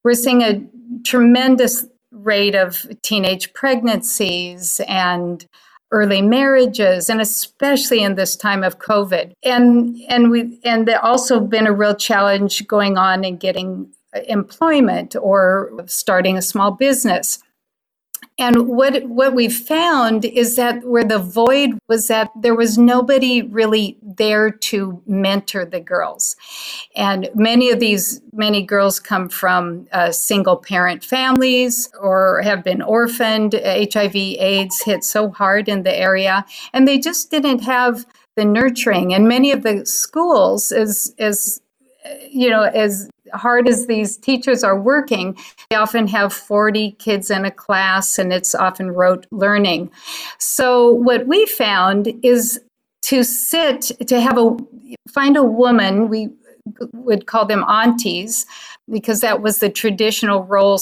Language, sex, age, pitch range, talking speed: English, female, 50-69, 195-245 Hz, 140 wpm